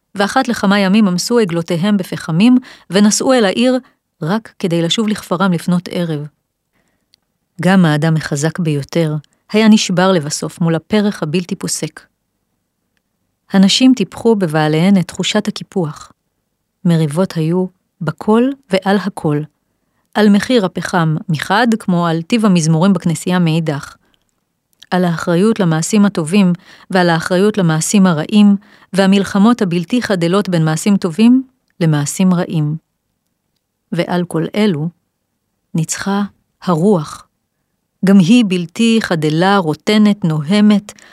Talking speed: 110 wpm